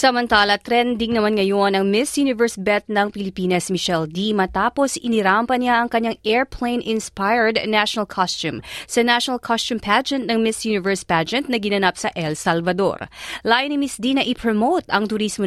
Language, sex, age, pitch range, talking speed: Filipino, female, 30-49, 190-255 Hz, 160 wpm